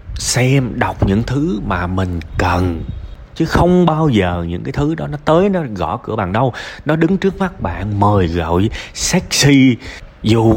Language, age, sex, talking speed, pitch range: Vietnamese, 30-49, male, 175 wpm, 95-135 Hz